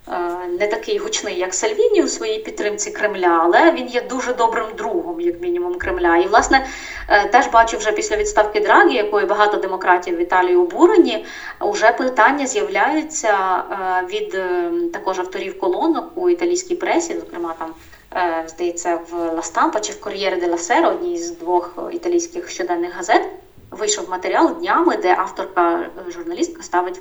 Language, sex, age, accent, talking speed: Ukrainian, female, 20-39, native, 145 wpm